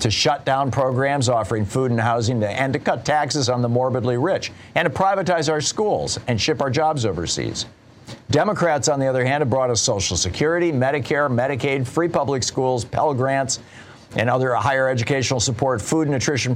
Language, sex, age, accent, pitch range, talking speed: English, male, 50-69, American, 110-140 Hz, 185 wpm